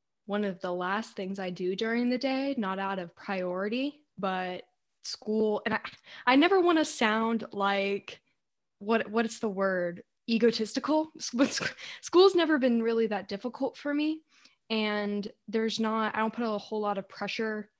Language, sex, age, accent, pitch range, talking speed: English, female, 10-29, American, 190-230 Hz, 165 wpm